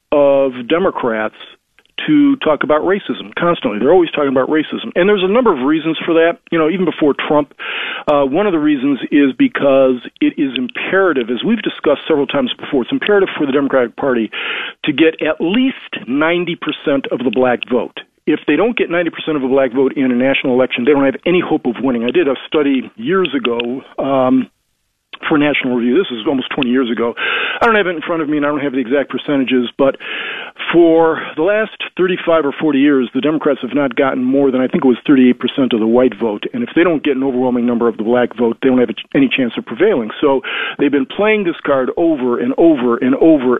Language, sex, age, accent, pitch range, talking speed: English, male, 40-59, American, 130-175 Hz, 225 wpm